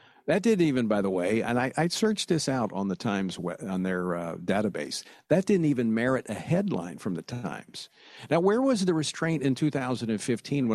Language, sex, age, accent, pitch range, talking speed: English, male, 50-69, American, 110-160 Hz, 195 wpm